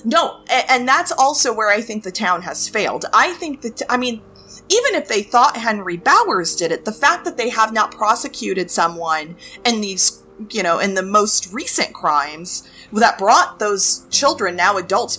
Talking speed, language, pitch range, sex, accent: 185 wpm, English, 180-240 Hz, female, American